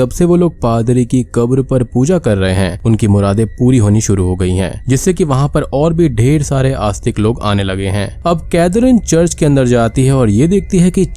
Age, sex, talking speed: 20-39, male, 235 wpm